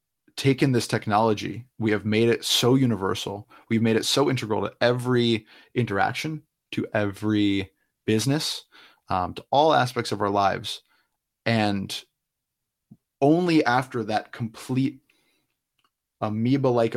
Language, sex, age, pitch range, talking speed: English, male, 20-39, 105-125 Hz, 115 wpm